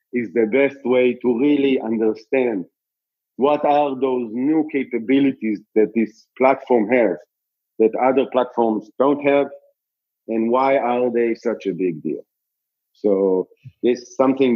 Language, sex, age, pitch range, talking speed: English, male, 50-69, 110-135 Hz, 135 wpm